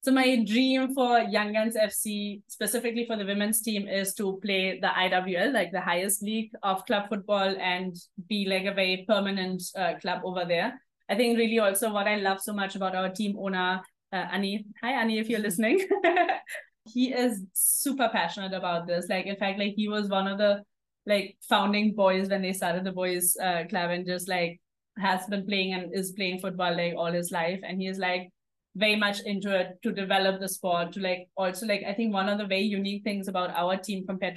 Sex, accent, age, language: female, Indian, 20-39, English